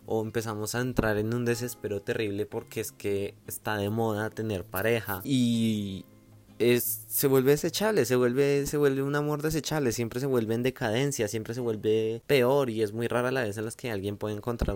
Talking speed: 200 wpm